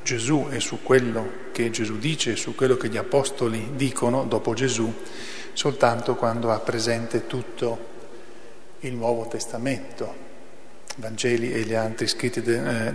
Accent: native